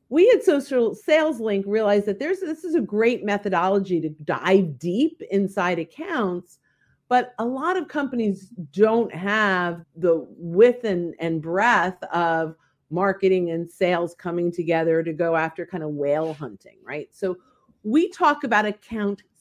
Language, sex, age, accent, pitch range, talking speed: English, female, 50-69, American, 170-225 Hz, 150 wpm